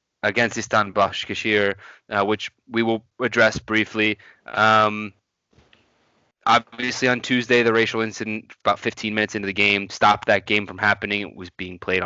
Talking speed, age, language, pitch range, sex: 145 wpm, 20-39, English, 95-110 Hz, male